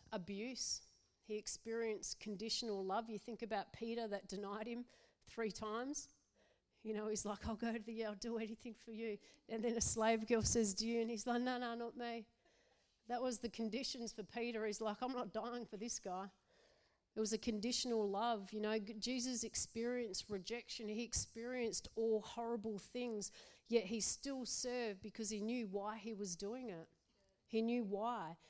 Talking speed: 185 wpm